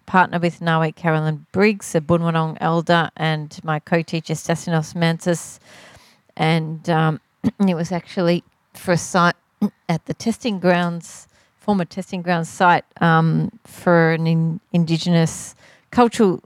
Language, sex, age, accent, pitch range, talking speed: English, female, 40-59, Australian, 170-210 Hz, 125 wpm